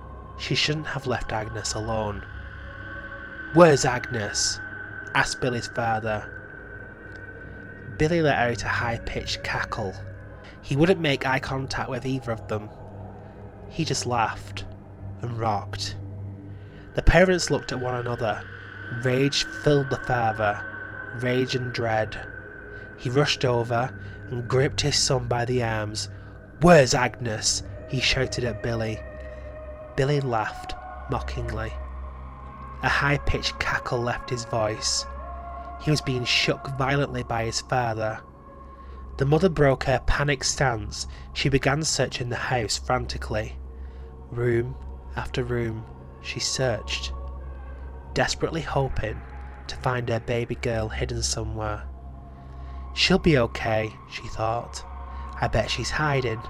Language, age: English, 20-39